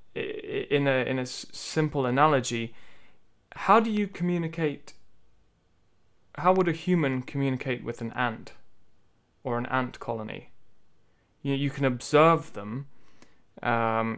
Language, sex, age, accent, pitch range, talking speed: English, male, 20-39, British, 120-150 Hz, 125 wpm